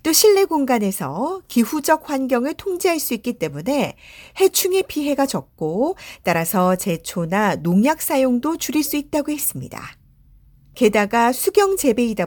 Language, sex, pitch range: Korean, female, 190-315 Hz